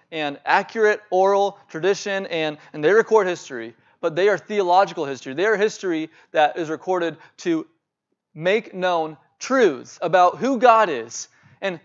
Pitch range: 165-215 Hz